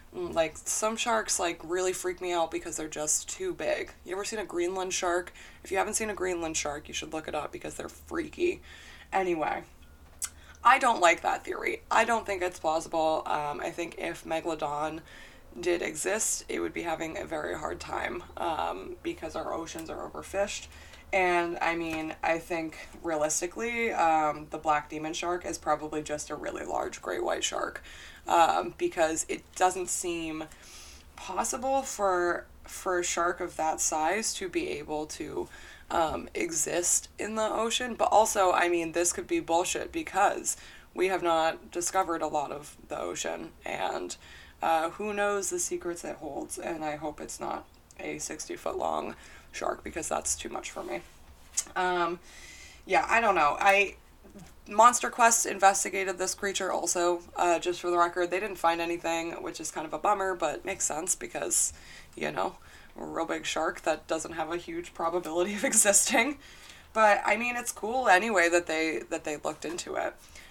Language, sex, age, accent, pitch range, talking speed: English, female, 20-39, American, 160-210 Hz, 175 wpm